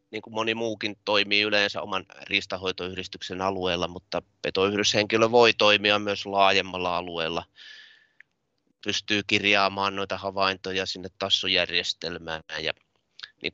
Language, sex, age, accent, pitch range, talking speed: Finnish, male, 30-49, native, 95-110 Hz, 105 wpm